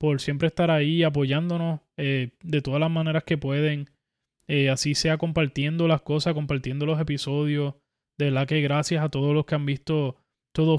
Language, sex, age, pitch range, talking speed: Spanish, male, 20-39, 145-180 Hz, 180 wpm